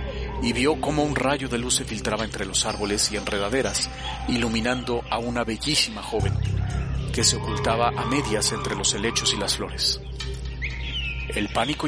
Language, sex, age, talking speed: Spanish, male, 40-59, 160 wpm